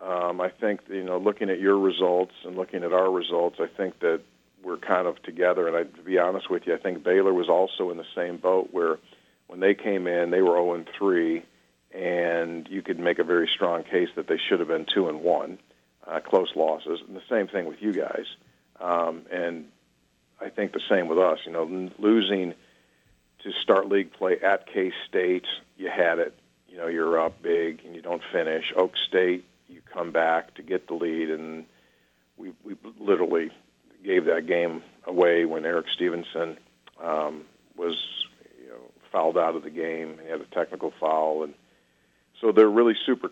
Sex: male